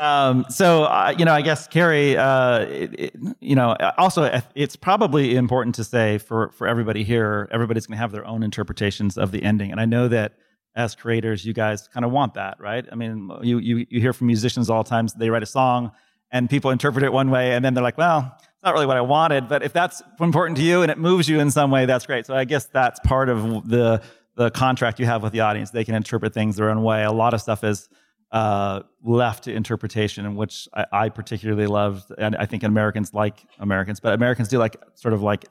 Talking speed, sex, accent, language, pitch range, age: 240 wpm, male, American, English, 105-130 Hz, 30-49